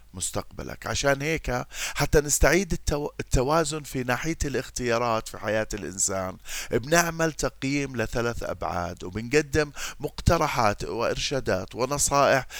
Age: 40-59